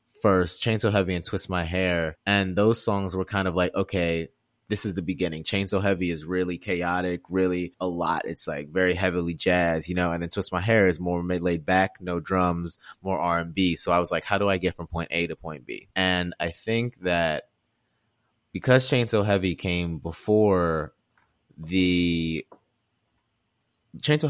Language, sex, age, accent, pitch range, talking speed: English, male, 20-39, American, 85-100 Hz, 195 wpm